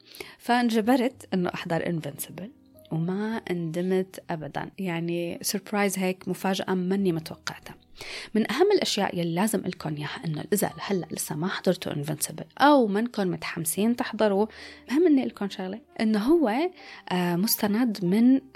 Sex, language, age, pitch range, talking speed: female, Arabic, 20-39, 180-225 Hz, 125 wpm